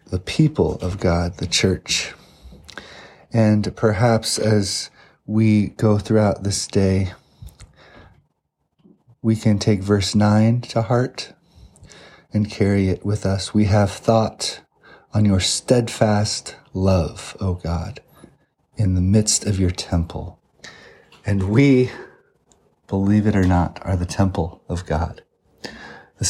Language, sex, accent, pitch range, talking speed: English, male, American, 90-105 Hz, 120 wpm